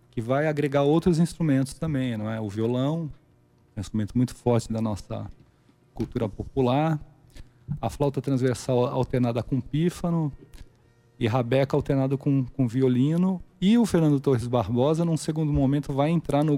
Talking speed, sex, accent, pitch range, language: 150 wpm, male, Brazilian, 120-145 Hz, Portuguese